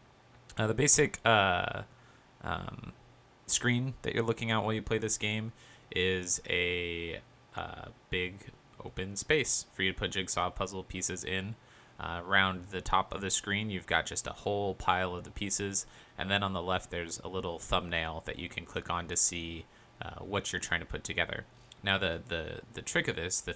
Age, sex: 20-39, male